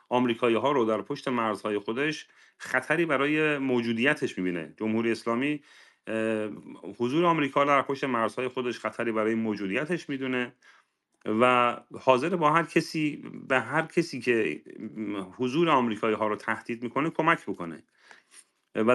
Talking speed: 130 wpm